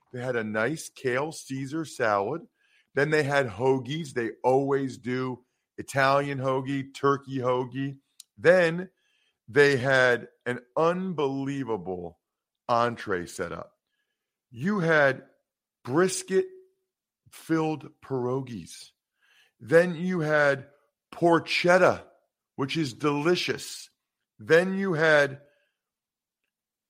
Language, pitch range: English, 125-165 Hz